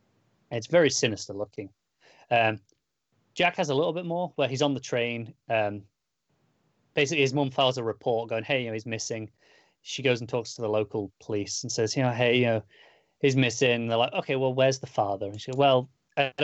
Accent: British